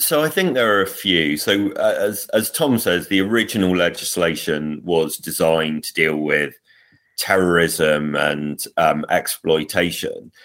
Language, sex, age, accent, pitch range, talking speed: English, male, 30-49, British, 85-100 Hz, 140 wpm